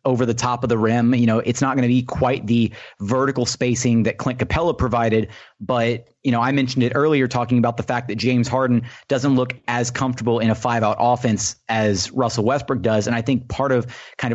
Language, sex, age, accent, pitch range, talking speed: English, male, 30-49, American, 115-130 Hz, 220 wpm